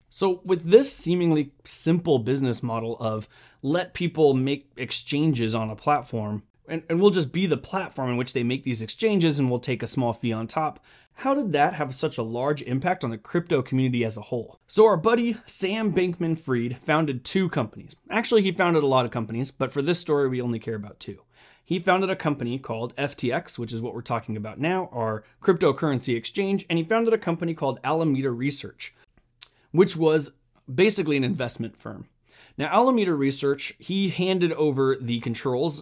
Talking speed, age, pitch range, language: 190 wpm, 30-49, 120-175 Hz, English